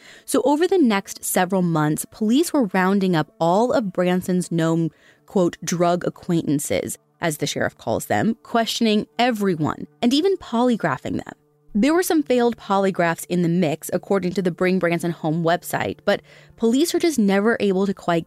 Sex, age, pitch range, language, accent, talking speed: female, 20-39, 170-235 Hz, English, American, 170 wpm